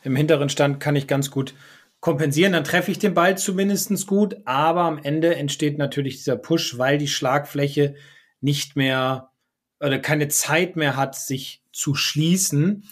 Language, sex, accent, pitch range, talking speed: German, male, German, 135-170 Hz, 165 wpm